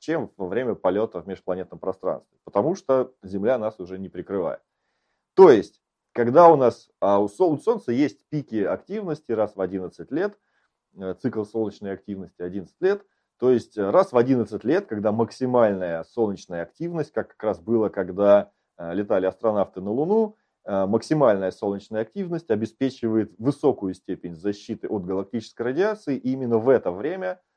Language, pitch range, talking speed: Russian, 95-135 Hz, 145 wpm